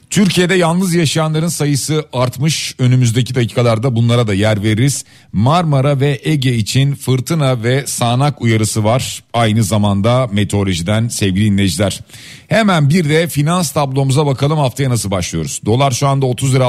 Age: 40-59